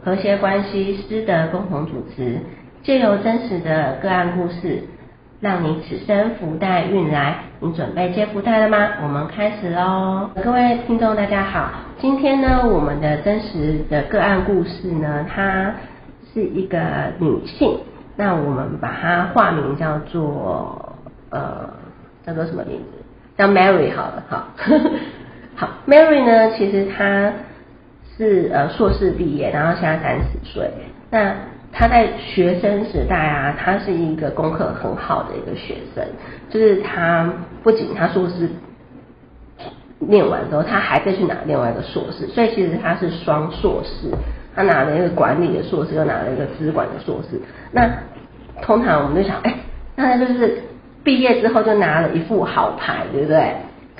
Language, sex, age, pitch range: Chinese, female, 40-59, 165-215 Hz